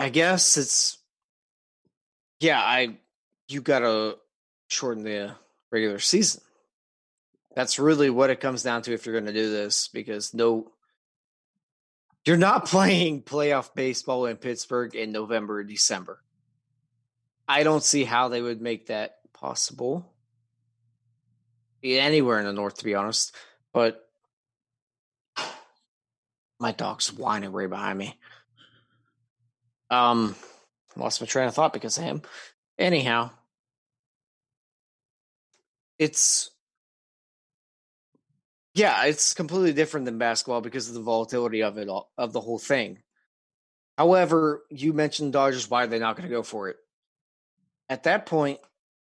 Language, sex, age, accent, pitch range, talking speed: English, male, 20-39, American, 115-140 Hz, 125 wpm